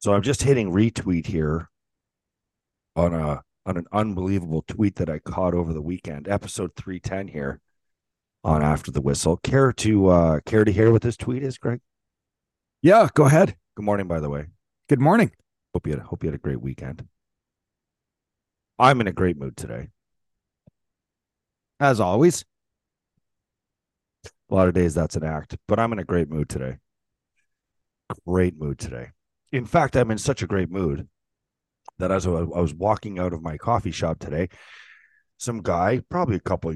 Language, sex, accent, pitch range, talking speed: English, male, American, 85-110 Hz, 175 wpm